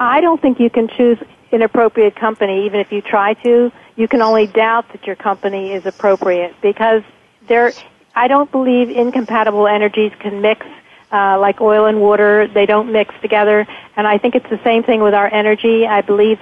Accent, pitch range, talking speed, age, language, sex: American, 200-230 Hz, 190 wpm, 50-69, English, female